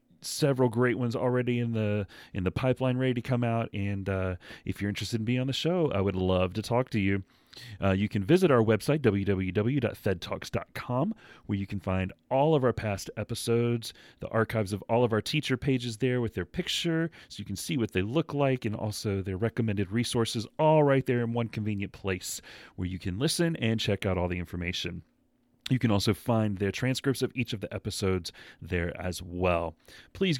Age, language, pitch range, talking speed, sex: 30-49, English, 100-130 Hz, 205 wpm, male